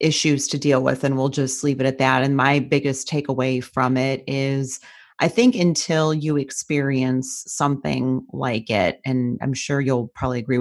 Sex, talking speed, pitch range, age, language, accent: female, 180 wpm, 135-155 Hz, 30-49, English, American